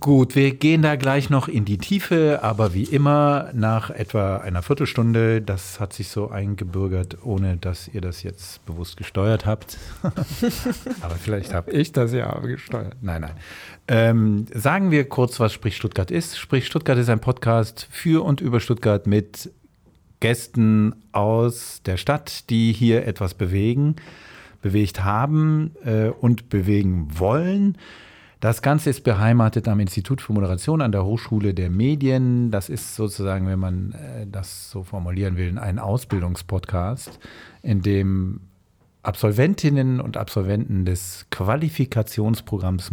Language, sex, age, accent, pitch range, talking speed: German, male, 50-69, German, 95-125 Hz, 140 wpm